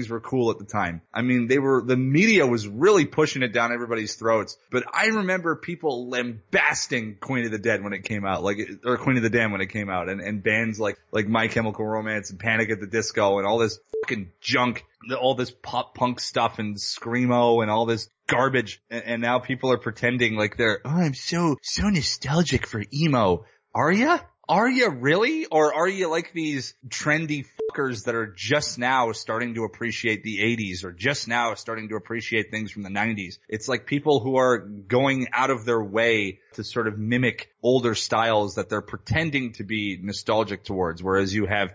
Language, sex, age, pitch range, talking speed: English, male, 30-49, 105-130 Hz, 205 wpm